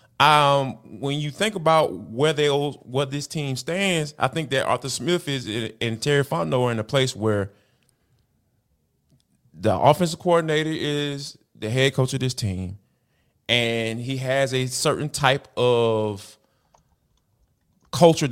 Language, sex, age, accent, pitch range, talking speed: English, male, 20-39, American, 120-150 Hz, 140 wpm